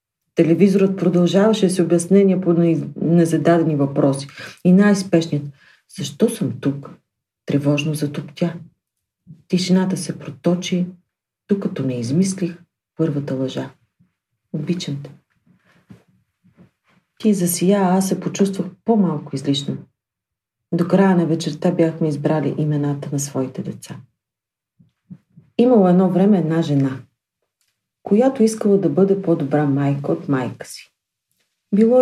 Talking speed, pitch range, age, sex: 110 wpm, 145-190 Hz, 40-59, female